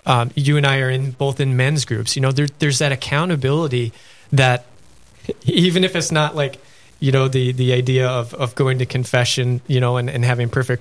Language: English